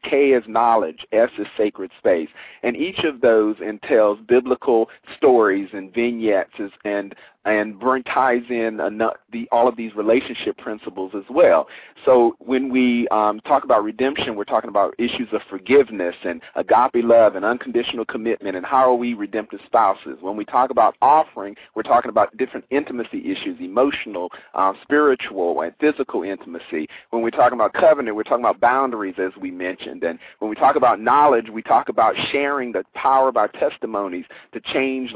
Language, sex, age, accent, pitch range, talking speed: English, male, 40-59, American, 115-175 Hz, 170 wpm